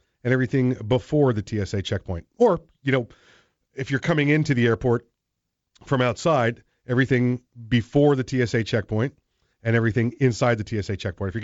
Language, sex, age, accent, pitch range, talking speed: English, male, 40-59, American, 105-130 Hz, 155 wpm